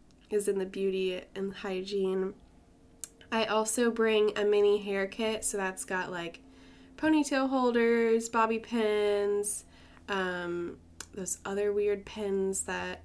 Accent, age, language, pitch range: American, 10-29, English, 180-220 Hz